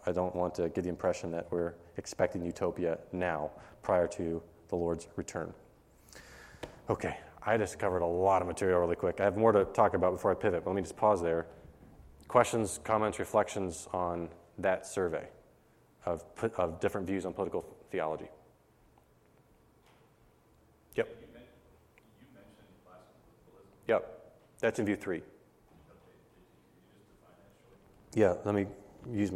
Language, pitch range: English, 90-110 Hz